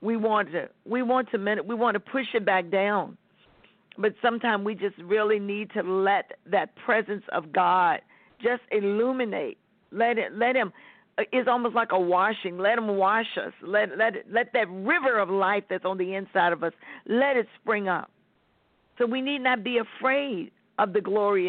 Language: English